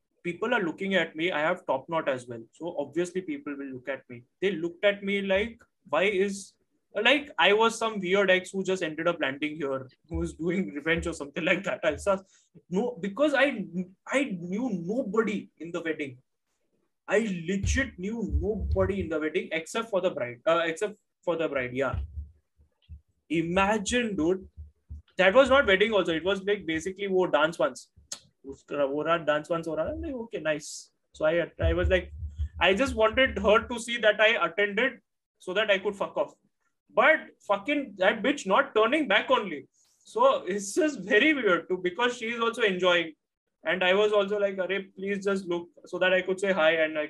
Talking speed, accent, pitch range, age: 185 wpm, Indian, 150-210 Hz, 20-39